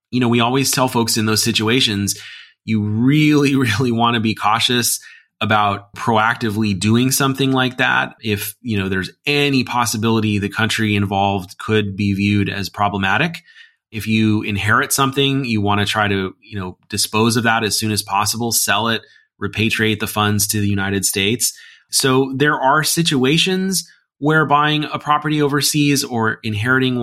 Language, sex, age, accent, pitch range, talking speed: English, male, 30-49, American, 100-120 Hz, 165 wpm